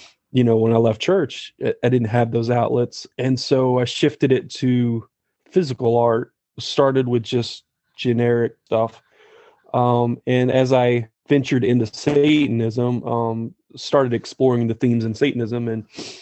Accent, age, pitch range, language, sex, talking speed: American, 30-49, 115-130 Hz, English, male, 145 wpm